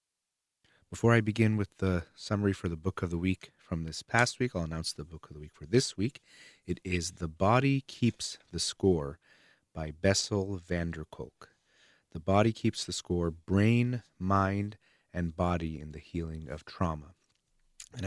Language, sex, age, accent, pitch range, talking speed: English, male, 30-49, American, 80-100 Hz, 175 wpm